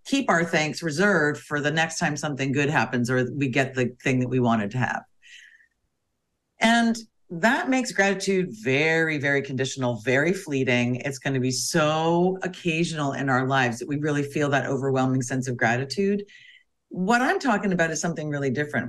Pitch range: 135-200 Hz